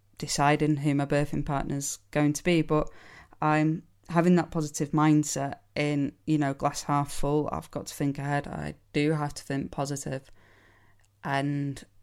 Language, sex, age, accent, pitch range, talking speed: English, female, 10-29, British, 120-155 Hz, 160 wpm